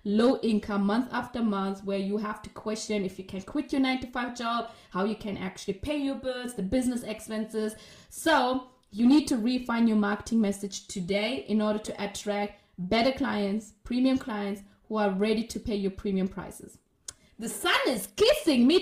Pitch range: 205-250 Hz